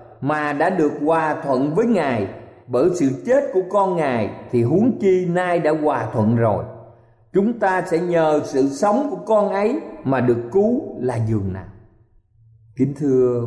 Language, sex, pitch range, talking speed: Vietnamese, male, 120-190 Hz, 170 wpm